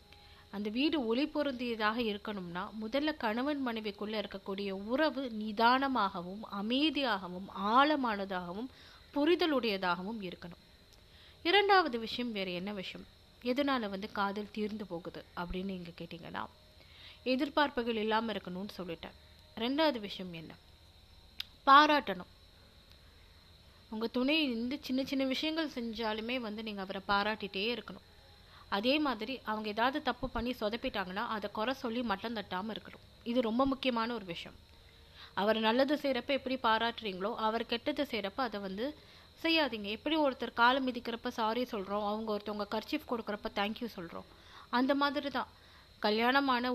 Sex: female